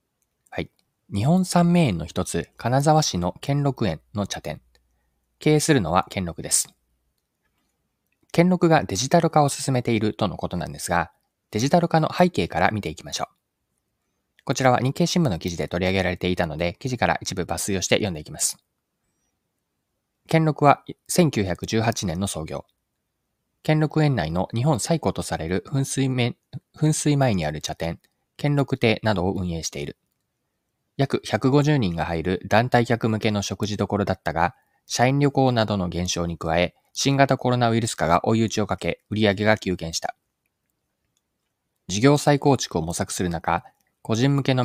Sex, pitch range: male, 90-135 Hz